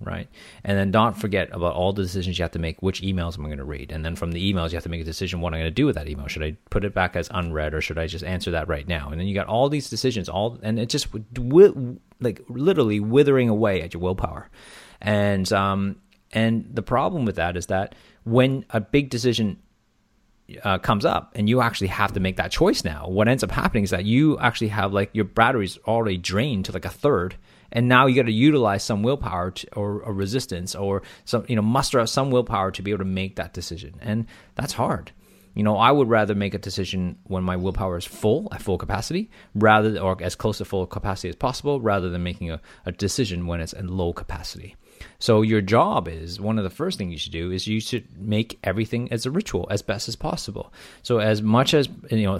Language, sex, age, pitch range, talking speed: English, male, 30-49, 90-115 Hz, 240 wpm